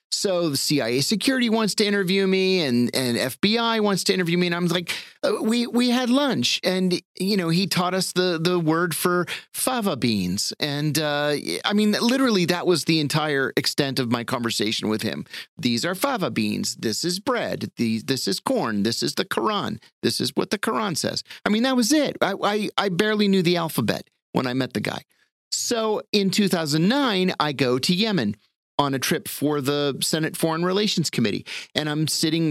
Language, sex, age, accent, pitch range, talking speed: English, male, 40-59, American, 125-185 Hz, 200 wpm